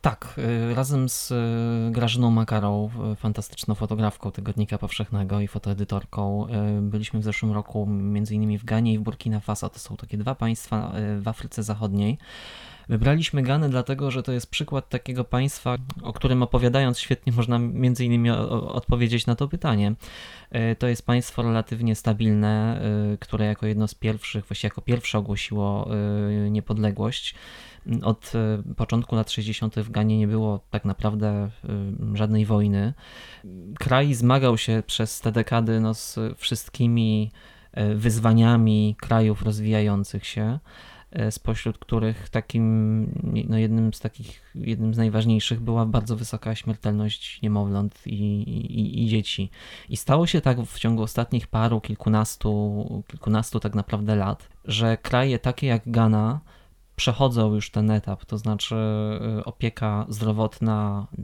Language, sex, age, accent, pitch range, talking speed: Polish, male, 20-39, native, 105-120 Hz, 130 wpm